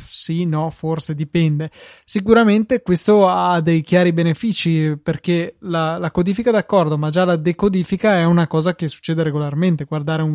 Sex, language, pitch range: male, Italian, 155-180 Hz